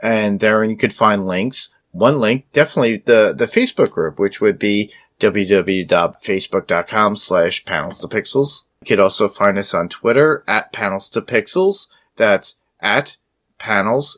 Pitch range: 100-140 Hz